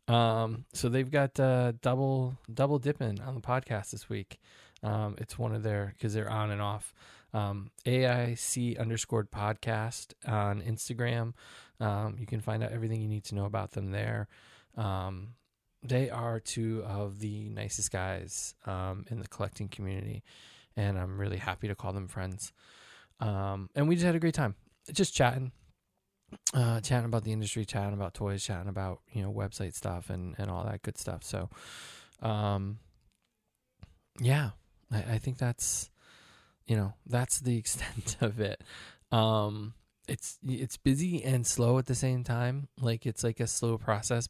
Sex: male